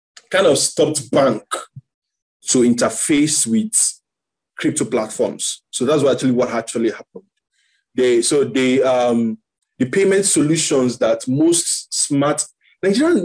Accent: Nigerian